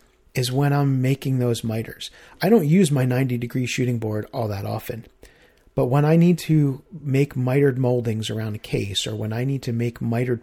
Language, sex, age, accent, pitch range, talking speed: English, male, 40-59, American, 115-140 Hz, 195 wpm